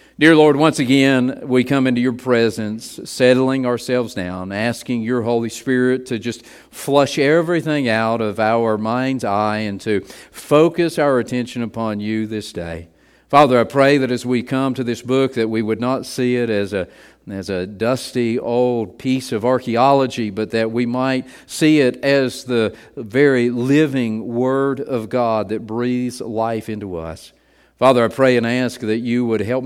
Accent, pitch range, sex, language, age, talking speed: American, 115-150 Hz, male, English, 50-69, 175 wpm